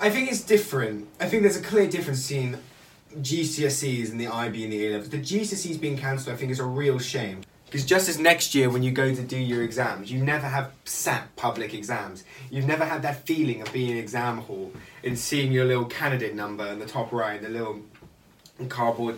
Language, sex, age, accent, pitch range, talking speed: English, male, 10-29, British, 115-140 Hz, 220 wpm